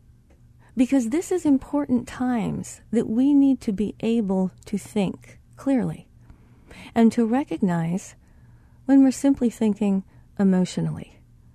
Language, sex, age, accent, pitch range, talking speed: English, female, 40-59, American, 180-260 Hz, 115 wpm